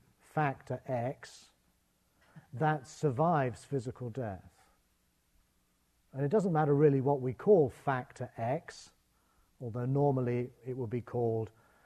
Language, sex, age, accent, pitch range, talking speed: English, male, 40-59, British, 105-145 Hz, 110 wpm